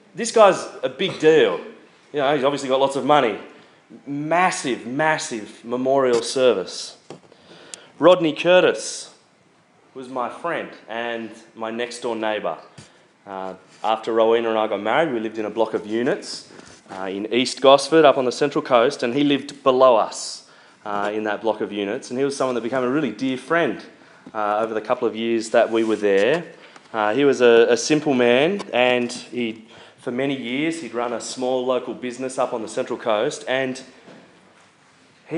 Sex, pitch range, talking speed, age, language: male, 115-150 Hz, 175 wpm, 30-49, English